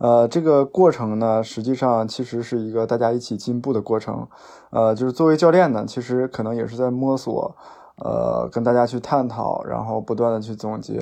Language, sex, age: Chinese, male, 20-39